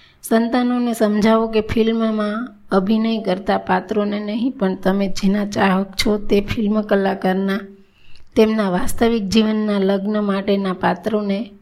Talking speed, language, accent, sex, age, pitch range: 115 wpm, Gujarati, native, female, 20-39, 195-220 Hz